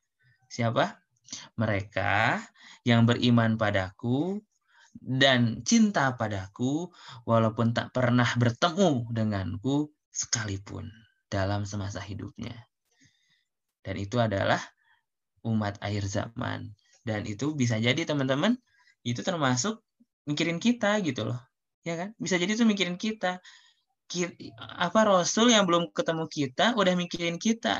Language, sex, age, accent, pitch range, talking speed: Indonesian, male, 20-39, native, 110-180 Hz, 110 wpm